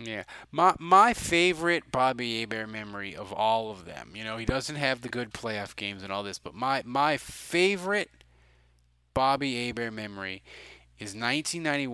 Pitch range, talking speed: 105-130 Hz, 165 wpm